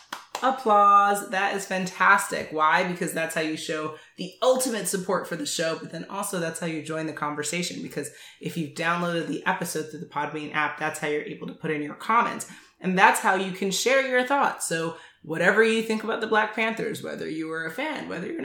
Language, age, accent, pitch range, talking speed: English, 20-39, American, 155-200 Hz, 220 wpm